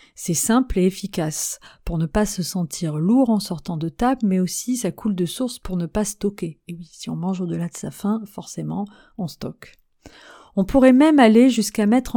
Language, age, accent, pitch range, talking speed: French, 40-59, French, 185-225 Hz, 205 wpm